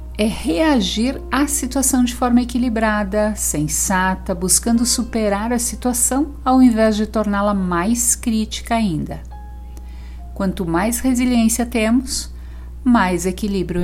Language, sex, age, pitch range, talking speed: Portuguese, female, 60-79, 150-235 Hz, 110 wpm